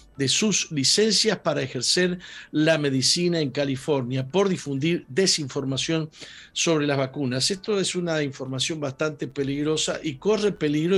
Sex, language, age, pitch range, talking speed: male, Spanish, 50-69, 130-160 Hz, 130 wpm